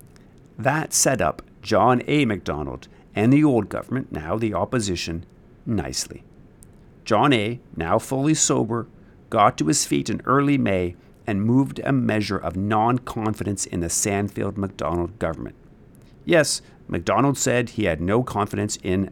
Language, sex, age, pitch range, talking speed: English, male, 50-69, 100-125 Hz, 140 wpm